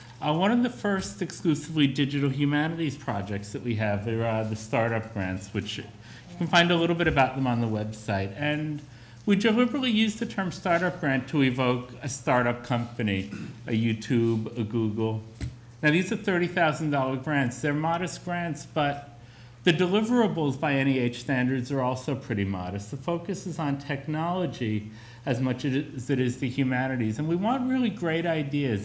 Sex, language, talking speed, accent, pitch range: male, English, 170 wpm, American, 120-155 Hz